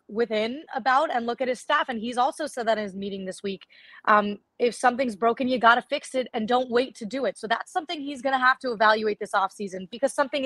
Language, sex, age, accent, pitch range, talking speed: English, female, 20-39, American, 205-260 Hz, 245 wpm